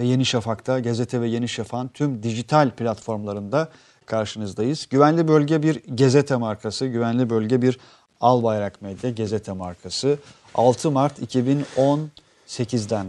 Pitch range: 115-145 Hz